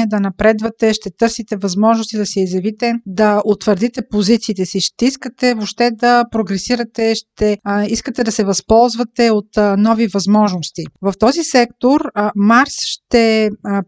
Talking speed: 145 wpm